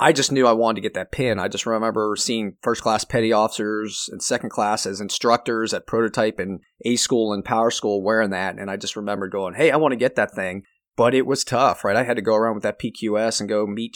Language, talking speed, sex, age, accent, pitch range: English, 260 wpm, male, 30-49, American, 100-120 Hz